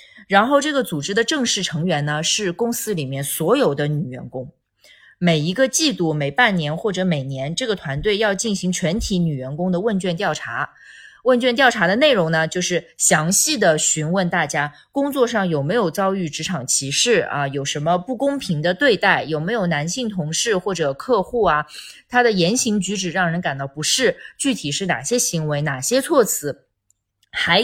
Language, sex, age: Chinese, female, 20-39